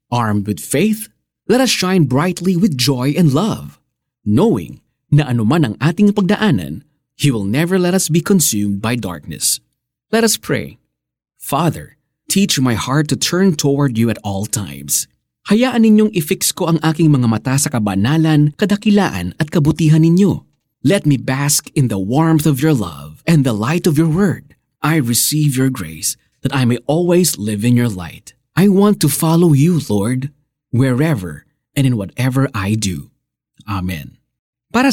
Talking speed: 165 wpm